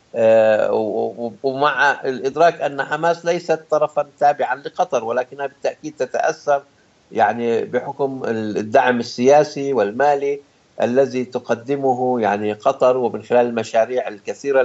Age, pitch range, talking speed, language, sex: 60-79, 125-155 Hz, 100 wpm, English, male